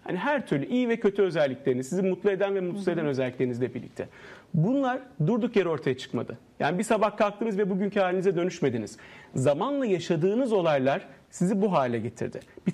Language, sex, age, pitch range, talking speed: Turkish, male, 40-59, 160-210 Hz, 170 wpm